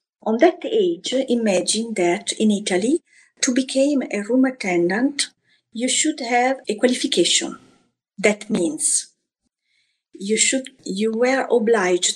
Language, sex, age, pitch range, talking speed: English, female, 50-69, 195-275 Hz, 115 wpm